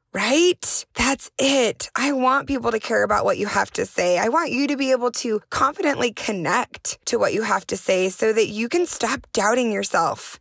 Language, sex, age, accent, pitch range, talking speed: English, female, 20-39, American, 190-245 Hz, 210 wpm